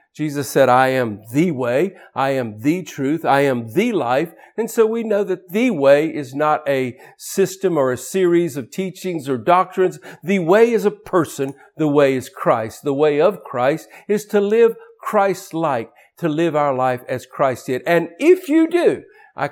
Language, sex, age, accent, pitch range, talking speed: English, male, 50-69, American, 135-180 Hz, 190 wpm